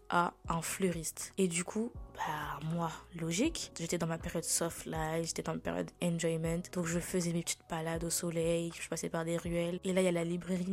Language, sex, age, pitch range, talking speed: French, female, 20-39, 170-195 Hz, 225 wpm